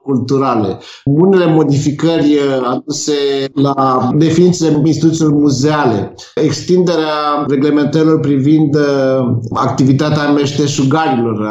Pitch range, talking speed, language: 135-160 Hz, 75 wpm, Romanian